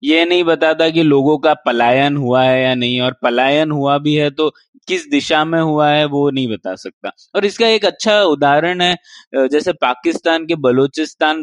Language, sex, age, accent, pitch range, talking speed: Hindi, male, 20-39, native, 130-170 Hz, 190 wpm